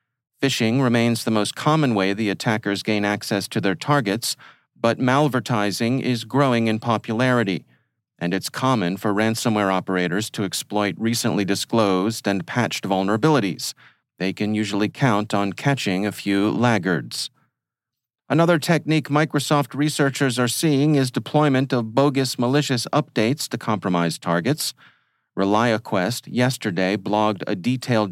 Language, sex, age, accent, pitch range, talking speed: English, male, 40-59, American, 105-130 Hz, 130 wpm